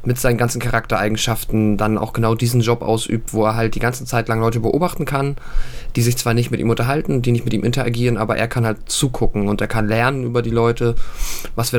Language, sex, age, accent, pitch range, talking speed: German, male, 20-39, German, 115-130 Hz, 235 wpm